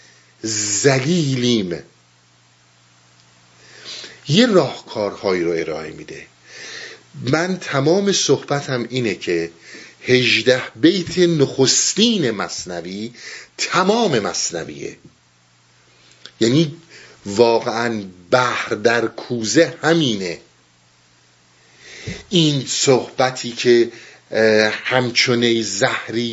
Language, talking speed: Persian, 65 wpm